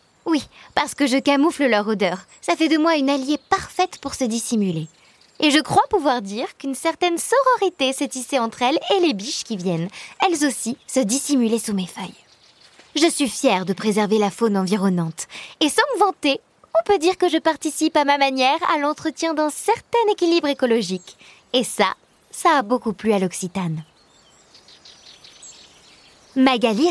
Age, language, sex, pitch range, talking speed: 20-39, French, female, 230-330 Hz, 170 wpm